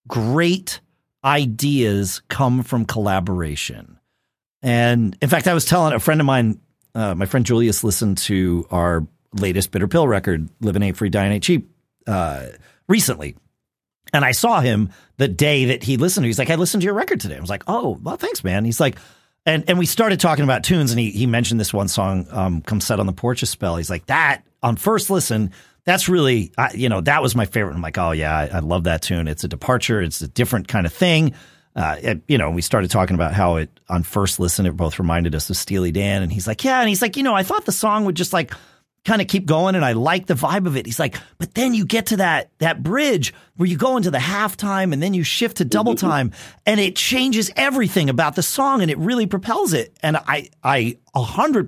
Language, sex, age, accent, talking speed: English, male, 40-59, American, 230 wpm